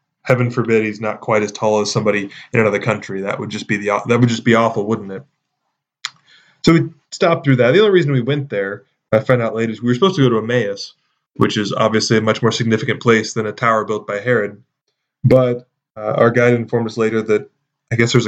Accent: American